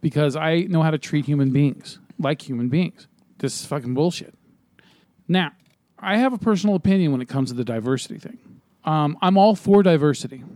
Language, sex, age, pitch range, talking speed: English, male, 40-59, 135-170 Hz, 190 wpm